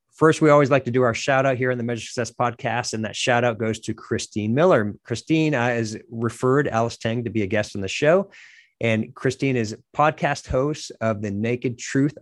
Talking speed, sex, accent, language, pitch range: 210 wpm, male, American, English, 110-130 Hz